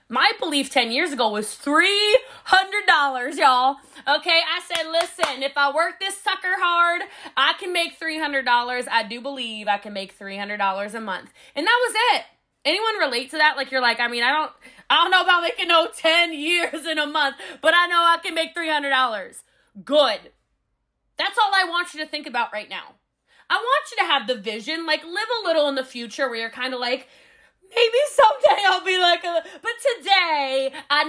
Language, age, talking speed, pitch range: English, 20-39, 195 wpm, 265-360 Hz